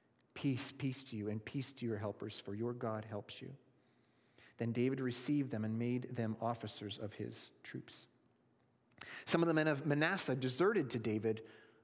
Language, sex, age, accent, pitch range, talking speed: English, male, 40-59, American, 110-140 Hz, 170 wpm